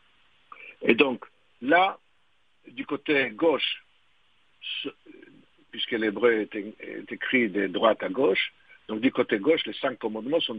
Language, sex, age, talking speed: French, male, 60-79, 130 wpm